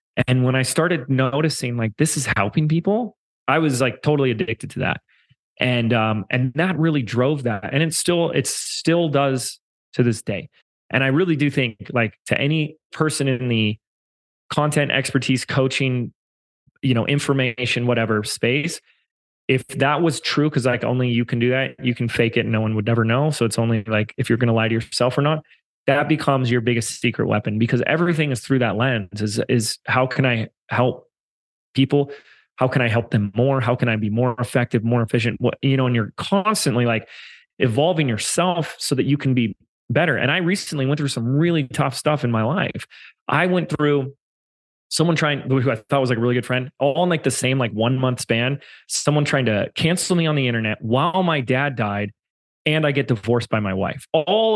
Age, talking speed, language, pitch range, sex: 30-49, 210 wpm, English, 120-150 Hz, male